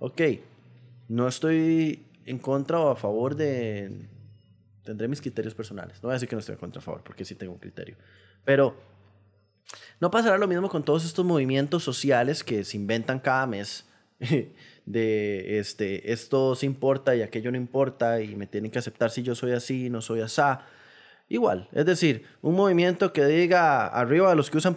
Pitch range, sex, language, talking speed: 115-160 Hz, male, Spanish, 185 wpm